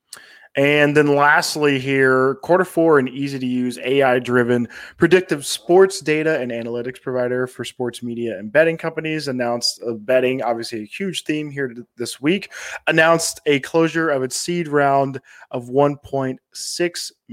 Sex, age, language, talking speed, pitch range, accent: male, 20-39, English, 140 wpm, 125-155 Hz, American